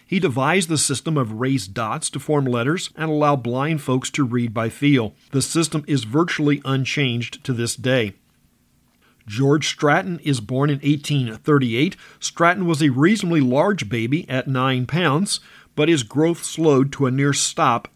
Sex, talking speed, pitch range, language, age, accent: male, 165 wpm, 125-155 Hz, English, 50-69, American